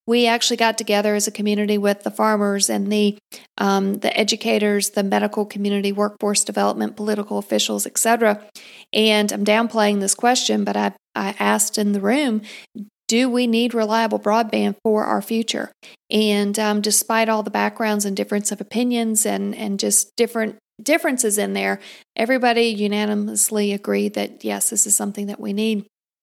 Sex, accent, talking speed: female, American, 165 wpm